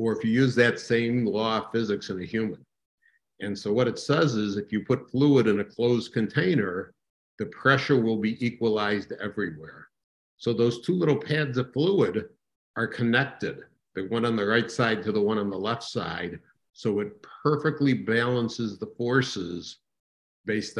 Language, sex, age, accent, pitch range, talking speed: English, male, 60-79, American, 100-120 Hz, 175 wpm